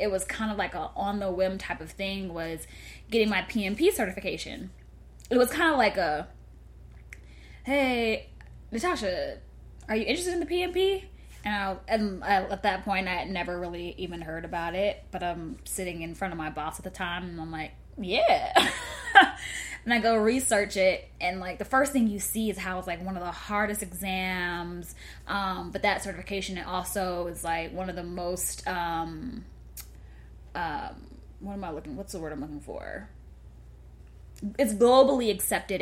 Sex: female